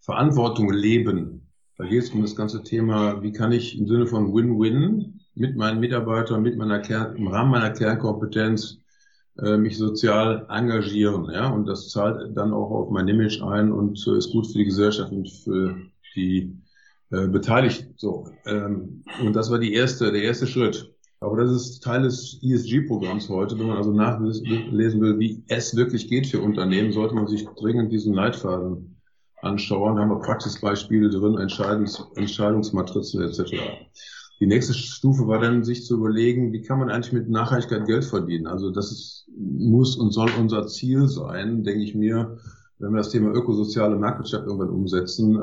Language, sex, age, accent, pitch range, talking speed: German, male, 50-69, German, 100-115 Hz, 170 wpm